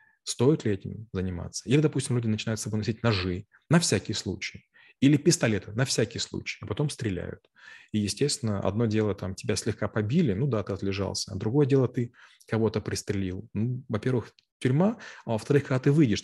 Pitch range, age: 105-125 Hz, 30-49